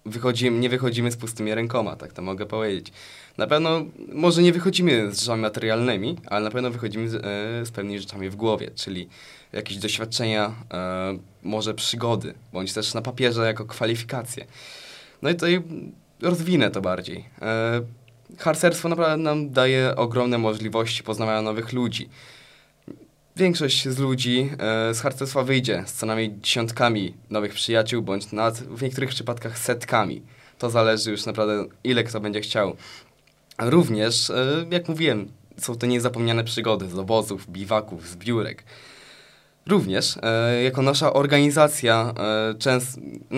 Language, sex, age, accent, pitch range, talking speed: Polish, male, 20-39, native, 110-130 Hz, 135 wpm